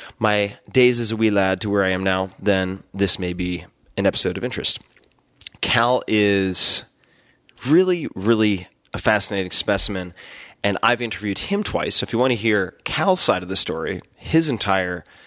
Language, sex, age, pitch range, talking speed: English, male, 30-49, 95-110 Hz, 175 wpm